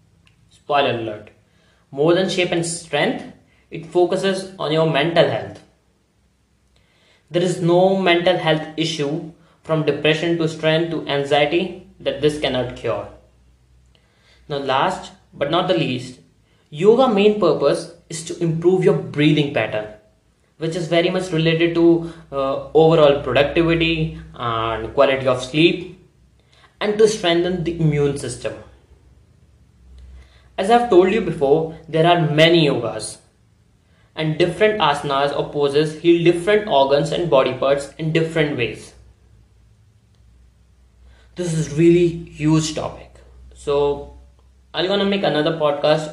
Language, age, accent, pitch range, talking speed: English, 20-39, Indian, 110-170 Hz, 125 wpm